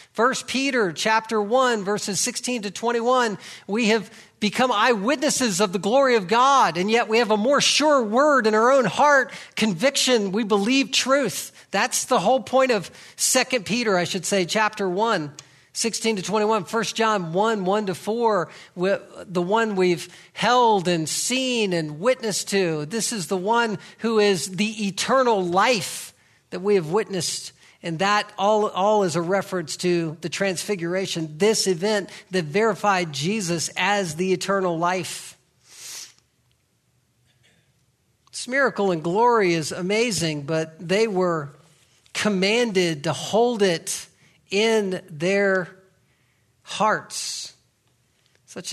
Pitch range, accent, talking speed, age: 175-225 Hz, American, 140 wpm, 50-69